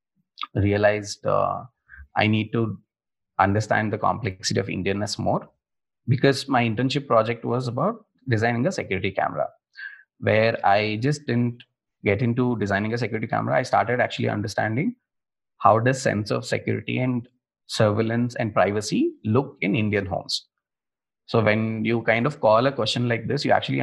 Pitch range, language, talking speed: 105-125 Hz, English, 150 wpm